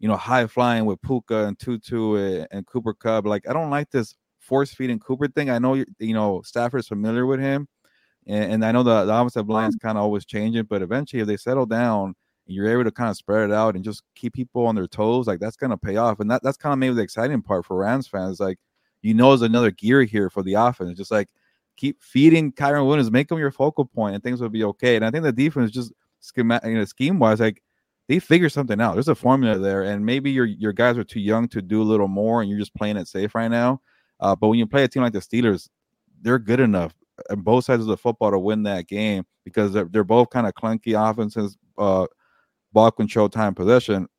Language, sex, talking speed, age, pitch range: English, male, 245 wpm, 20-39, 105-125 Hz